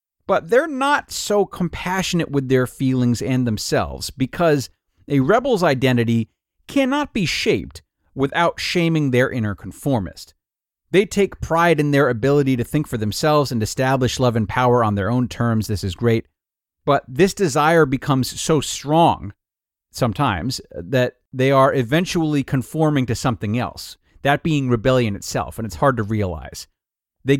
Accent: American